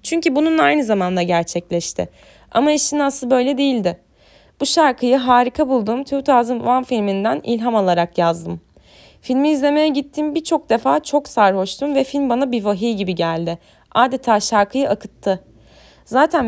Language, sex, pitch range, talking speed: Turkish, female, 200-280 Hz, 135 wpm